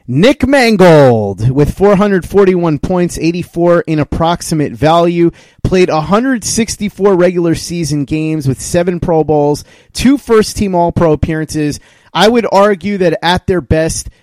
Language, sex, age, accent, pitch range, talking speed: English, male, 30-49, American, 140-175 Hz, 130 wpm